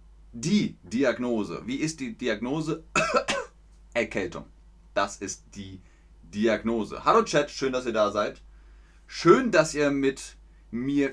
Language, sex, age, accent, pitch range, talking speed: German, male, 30-49, German, 105-145 Hz, 125 wpm